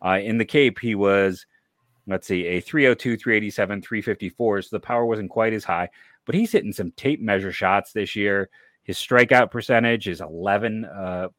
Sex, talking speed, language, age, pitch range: male, 180 wpm, English, 30-49, 95-120 Hz